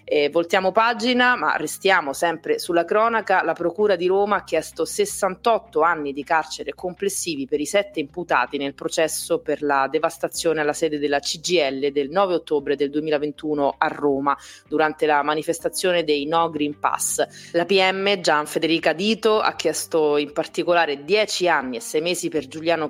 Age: 30-49